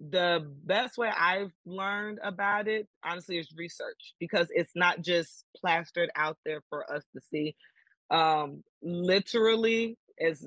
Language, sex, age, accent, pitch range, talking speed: English, female, 20-39, American, 165-200 Hz, 140 wpm